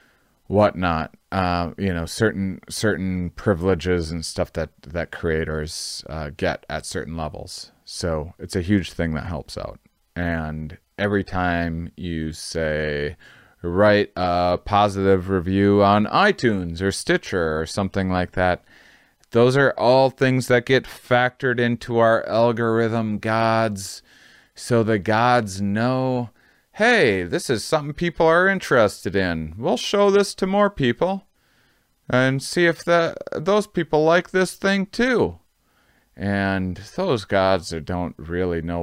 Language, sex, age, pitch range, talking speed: English, male, 30-49, 85-120 Hz, 135 wpm